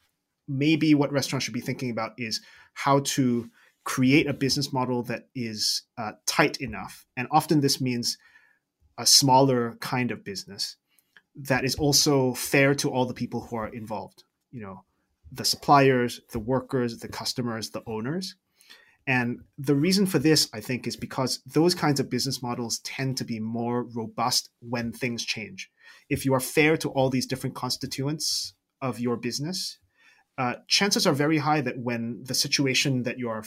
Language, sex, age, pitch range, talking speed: English, male, 20-39, 115-140 Hz, 170 wpm